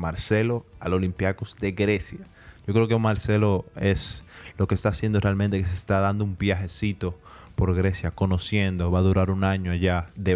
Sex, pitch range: male, 90-105 Hz